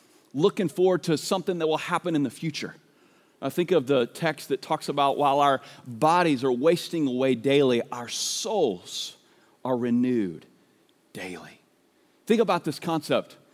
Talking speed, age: 150 wpm, 40-59